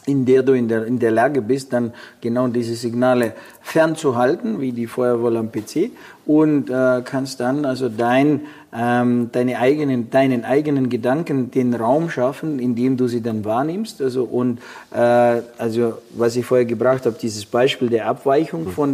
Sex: male